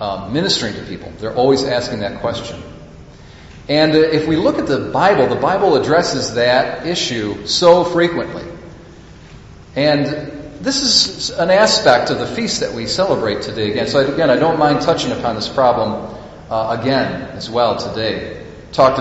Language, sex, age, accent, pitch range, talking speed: English, male, 40-59, American, 120-150 Hz, 165 wpm